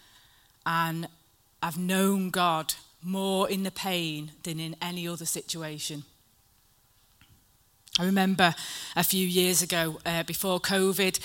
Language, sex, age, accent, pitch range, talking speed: English, female, 30-49, British, 170-220 Hz, 115 wpm